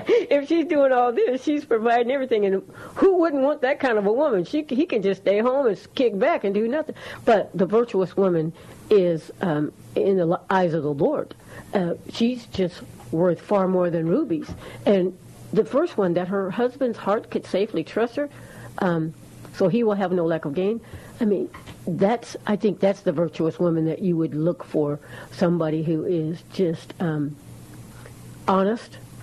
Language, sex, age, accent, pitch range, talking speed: English, female, 60-79, American, 165-220 Hz, 185 wpm